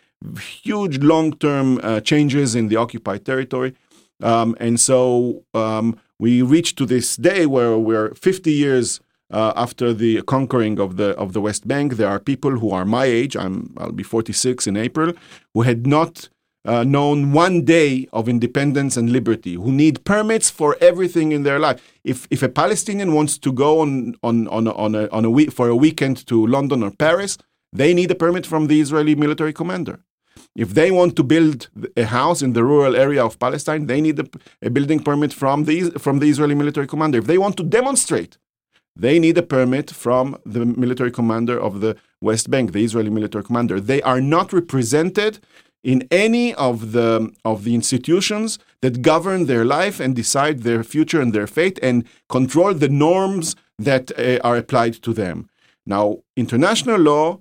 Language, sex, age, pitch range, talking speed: English, male, 40-59, 115-155 Hz, 185 wpm